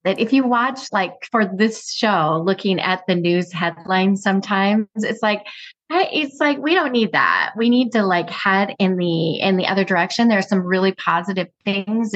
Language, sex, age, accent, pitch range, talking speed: English, female, 30-49, American, 170-230 Hz, 195 wpm